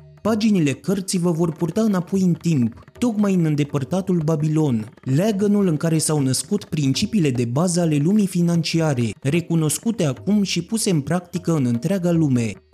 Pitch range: 145-190 Hz